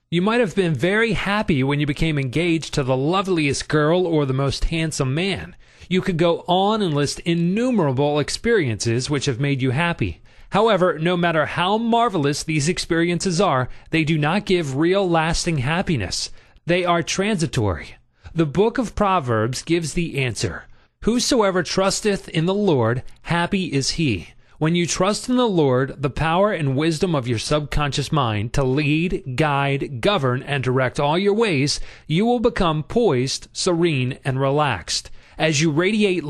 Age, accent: 30-49, American